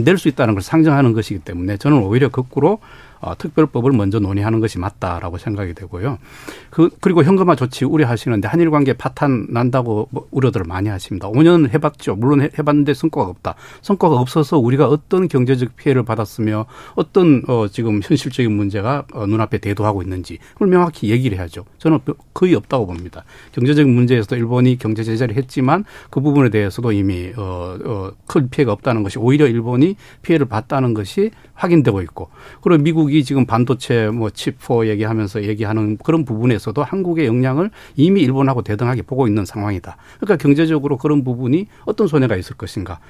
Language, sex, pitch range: Korean, male, 110-150 Hz